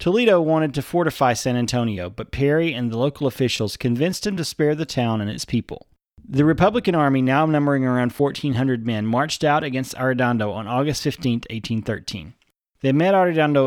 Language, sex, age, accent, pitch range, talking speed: English, male, 30-49, American, 120-155 Hz, 175 wpm